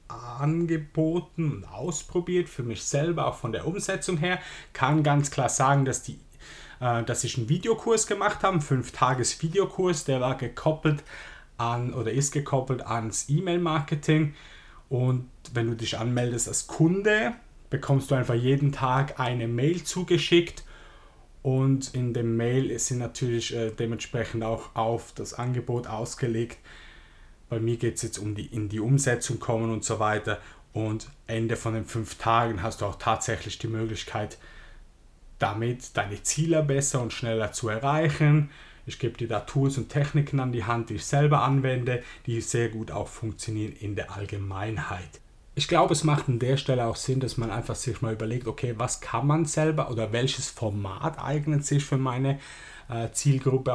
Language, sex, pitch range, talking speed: German, male, 115-145 Hz, 165 wpm